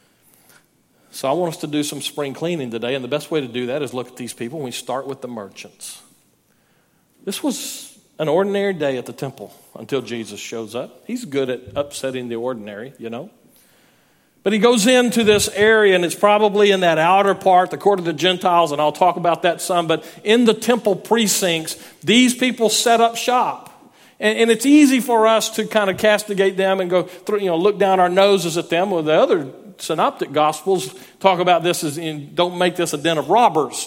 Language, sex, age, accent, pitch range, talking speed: English, male, 50-69, American, 145-215 Hz, 215 wpm